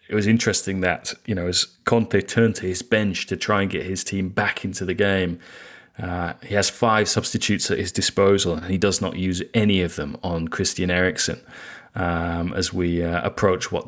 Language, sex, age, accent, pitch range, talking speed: English, male, 30-49, British, 90-105 Hz, 205 wpm